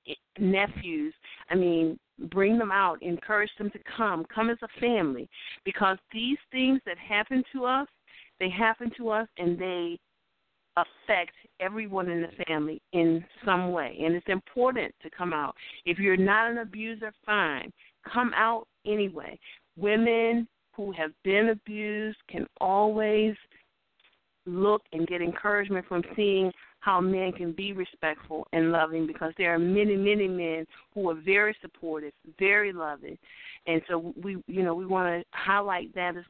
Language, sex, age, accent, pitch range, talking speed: English, female, 50-69, American, 170-210 Hz, 155 wpm